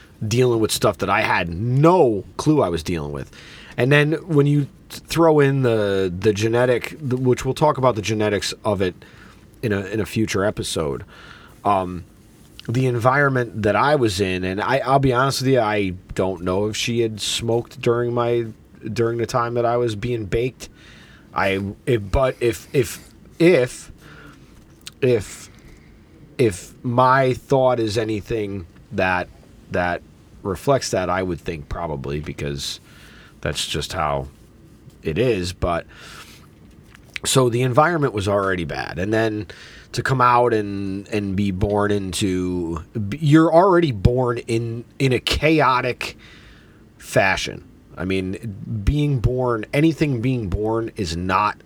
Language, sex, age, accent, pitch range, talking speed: English, male, 30-49, American, 95-125 Hz, 145 wpm